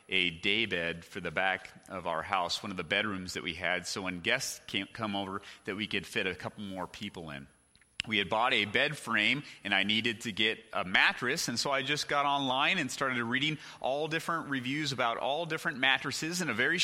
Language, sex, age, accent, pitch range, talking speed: English, male, 30-49, American, 115-185 Hz, 225 wpm